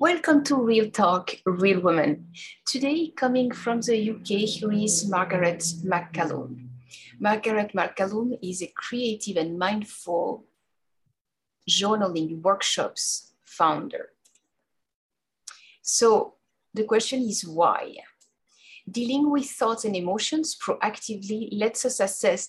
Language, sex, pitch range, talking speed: English, female, 175-225 Hz, 105 wpm